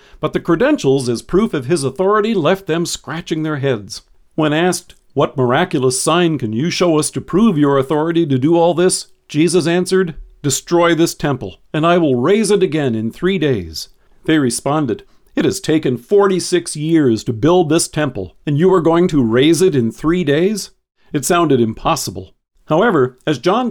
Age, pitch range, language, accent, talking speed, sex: 50-69, 125-175 Hz, English, American, 180 wpm, male